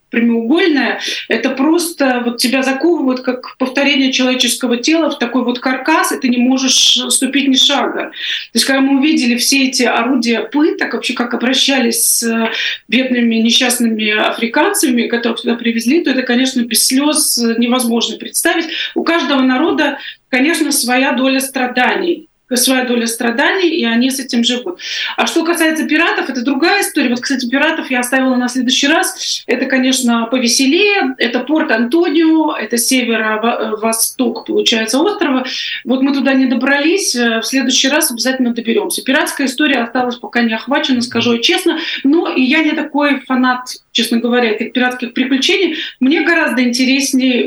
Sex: female